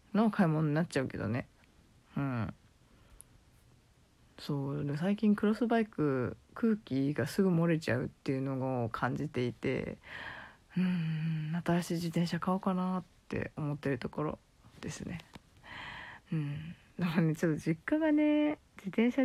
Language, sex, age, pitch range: Japanese, female, 20-39, 145-190 Hz